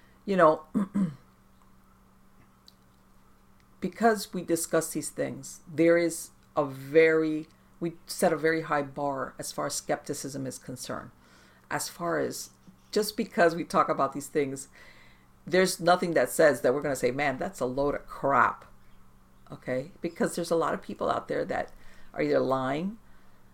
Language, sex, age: English, female, 50-69